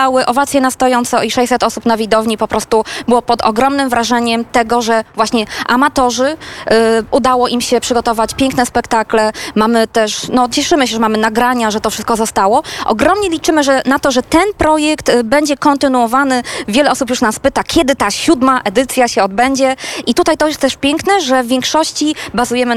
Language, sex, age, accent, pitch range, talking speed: Polish, female, 20-39, native, 220-270 Hz, 175 wpm